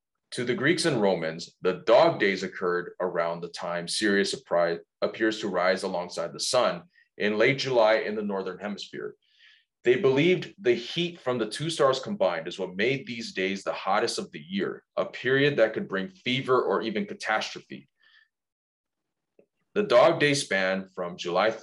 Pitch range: 100-155 Hz